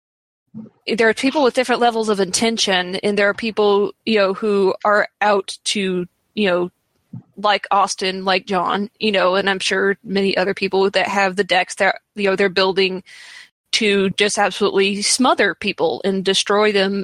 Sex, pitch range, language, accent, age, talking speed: female, 190-215 Hz, English, American, 20-39, 175 wpm